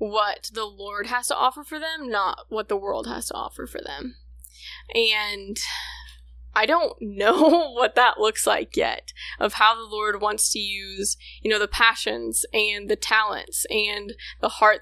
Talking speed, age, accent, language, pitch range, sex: 175 wpm, 10-29, American, English, 210-260 Hz, female